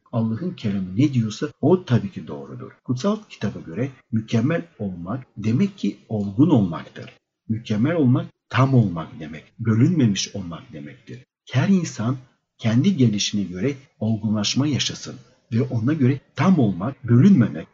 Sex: male